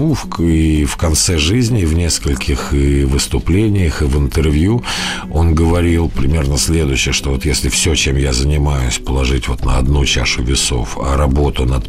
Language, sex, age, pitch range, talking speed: Russian, male, 50-69, 75-100 Hz, 165 wpm